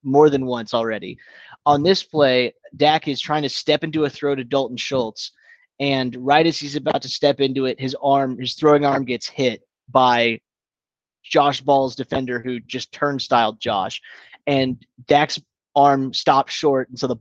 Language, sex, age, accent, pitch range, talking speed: English, male, 30-49, American, 120-145 Hz, 180 wpm